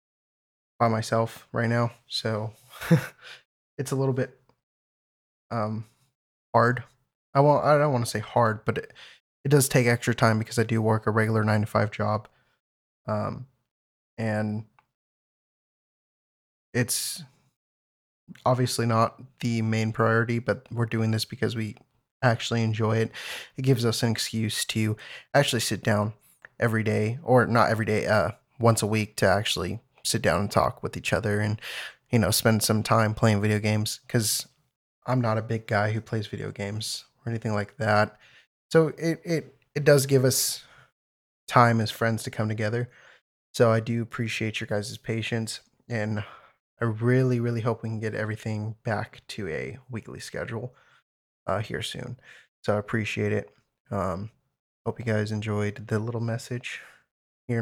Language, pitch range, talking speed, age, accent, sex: English, 105-120 Hz, 160 wpm, 10-29, American, male